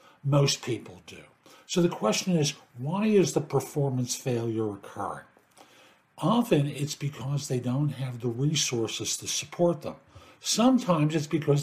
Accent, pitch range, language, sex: American, 130-175 Hz, English, male